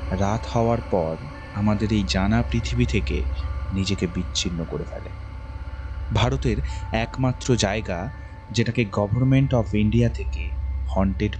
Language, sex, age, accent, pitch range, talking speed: Bengali, male, 30-49, native, 85-120 Hz, 110 wpm